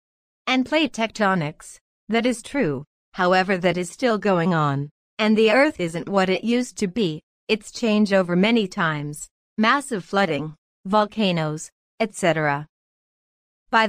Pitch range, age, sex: 170-225 Hz, 30-49, female